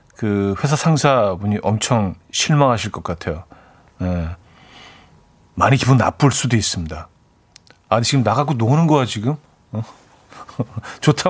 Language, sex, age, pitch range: Korean, male, 40-59, 105-140 Hz